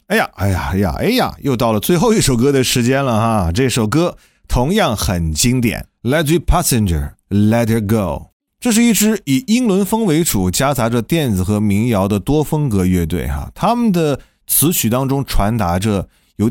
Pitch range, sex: 100-160 Hz, male